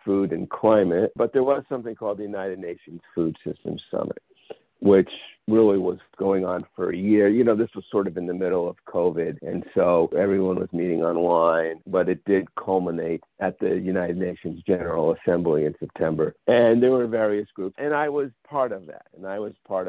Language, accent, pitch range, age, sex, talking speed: English, American, 90-125 Hz, 50-69, male, 200 wpm